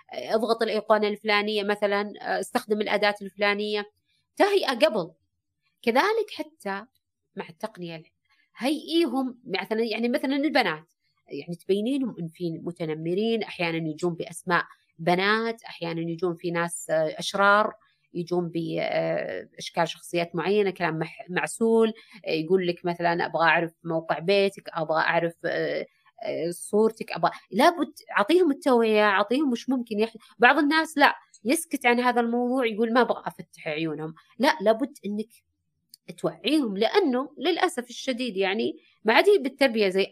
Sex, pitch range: female, 170-245 Hz